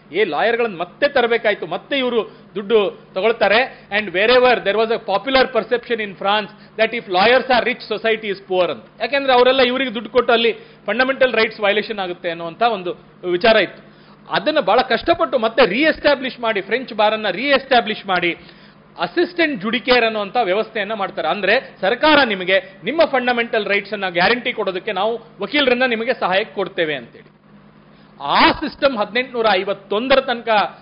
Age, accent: 40-59, native